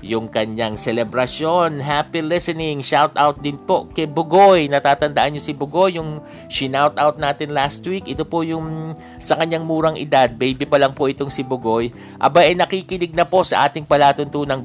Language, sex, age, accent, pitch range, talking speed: Filipino, male, 50-69, native, 125-155 Hz, 180 wpm